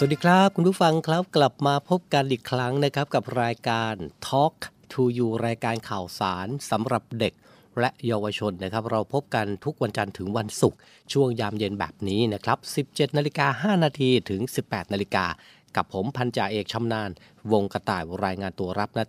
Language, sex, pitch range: Thai, male, 105-130 Hz